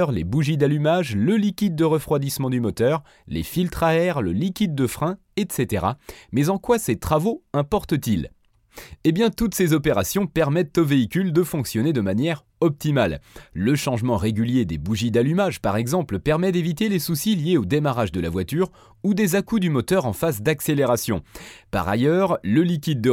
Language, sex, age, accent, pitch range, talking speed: French, male, 30-49, French, 115-175 Hz, 175 wpm